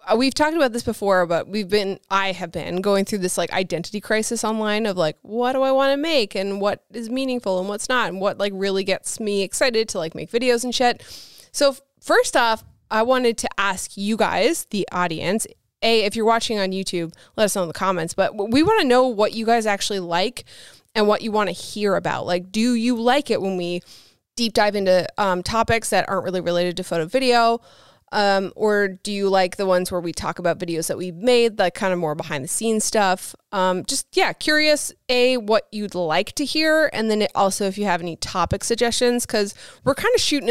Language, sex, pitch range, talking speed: English, female, 185-235 Hz, 225 wpm